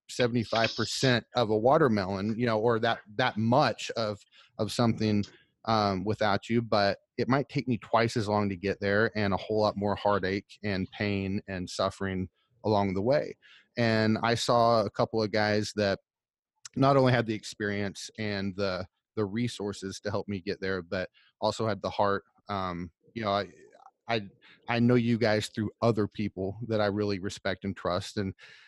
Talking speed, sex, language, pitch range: 180 wpm, male, English, 100-120 Hz